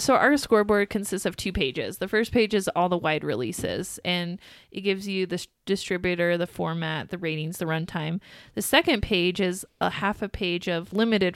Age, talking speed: 20-39, 195 wpm